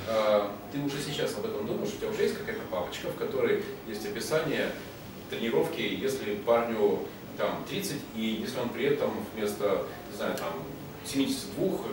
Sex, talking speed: male, 155 wpm